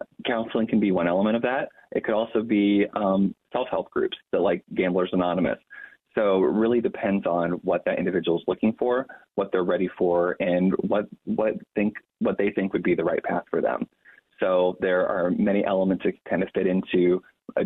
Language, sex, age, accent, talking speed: English, male, 20-39, American, 205 wpm